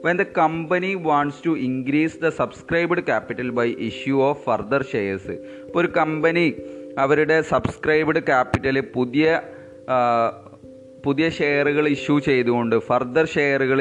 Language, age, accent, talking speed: Malayalam, 30-49, native, 120 wpm